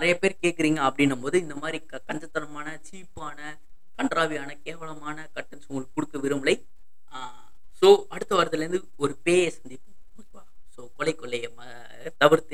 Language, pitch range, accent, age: Tamil, 135-170 Hz, native, 20-39